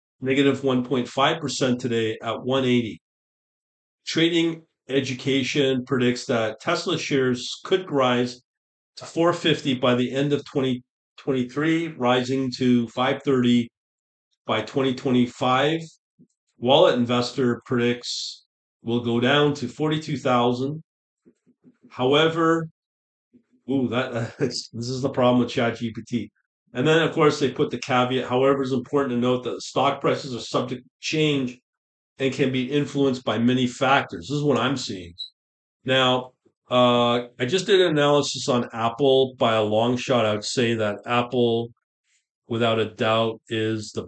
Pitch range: 115-140 Hz